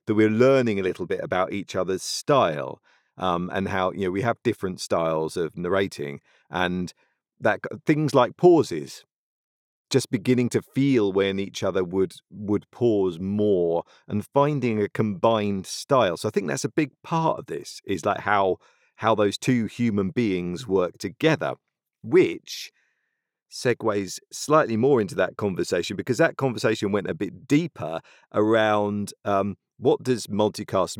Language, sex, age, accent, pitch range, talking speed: English, male, 40-59, British, 95-125 Hz, 155 wpm